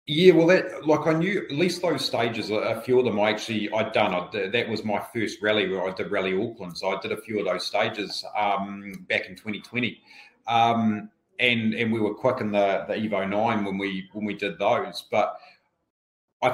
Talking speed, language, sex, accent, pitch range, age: 220 wpm, English, male, Australian, 105-125 Hz, 30-49